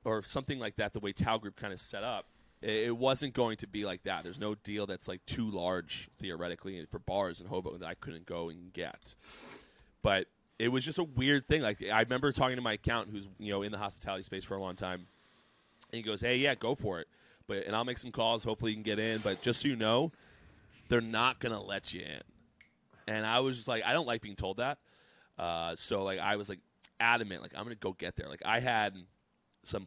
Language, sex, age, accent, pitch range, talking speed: English, male, 30-49, American, 100-120 Hz, 245 wpm